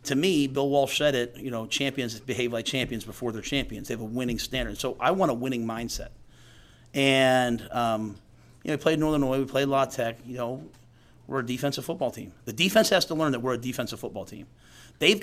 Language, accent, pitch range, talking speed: English, American, 115-135 Hz, 225 wpm